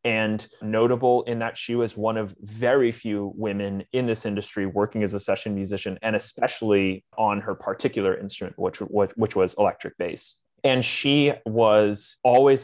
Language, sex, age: English, male, 20-39